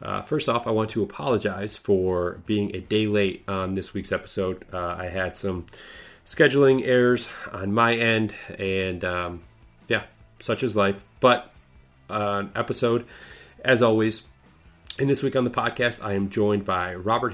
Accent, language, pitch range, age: American, English, 95-110 Hz, 30-49